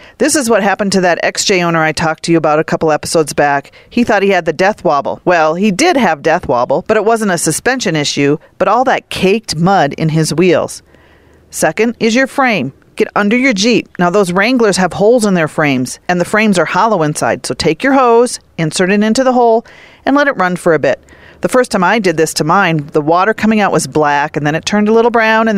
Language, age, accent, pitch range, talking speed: English, 40-59, American, 160-220 Hz, 245 wpm